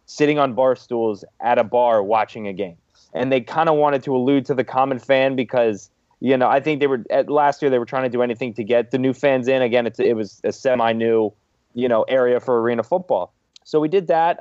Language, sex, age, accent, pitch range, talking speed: English, male, 20-39, American, 110-135 Hz, 235 wpm